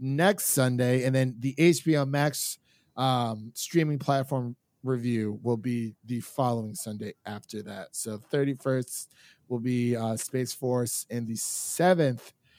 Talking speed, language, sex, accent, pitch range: 135 wpm, English, male, American, 120-150 Hz